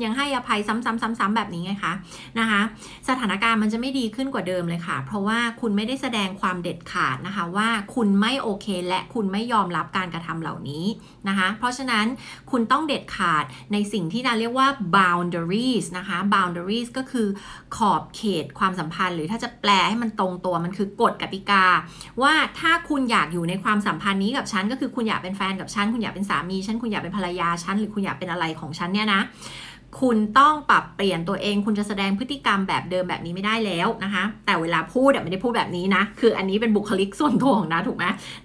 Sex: female